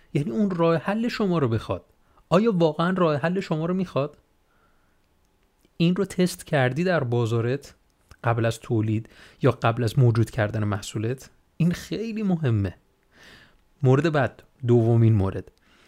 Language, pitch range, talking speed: Persian, 115-170 Hz, 135 wpm